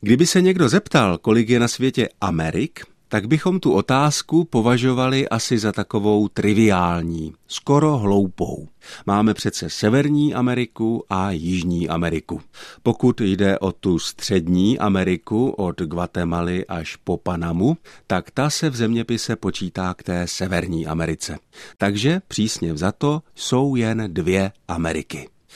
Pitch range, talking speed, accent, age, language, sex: 90-130 Hz, 130 wpm, native, 50-69, Czech, male